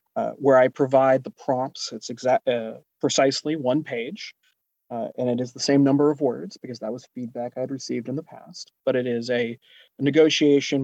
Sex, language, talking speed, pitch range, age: male, English, 195 wpm, 120-140 Hz, 30-49